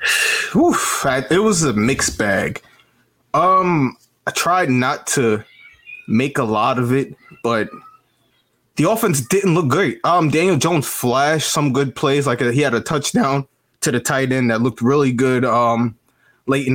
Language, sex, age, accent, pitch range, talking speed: English, male, 20-39, American, 125-145 Hz, 160 wpm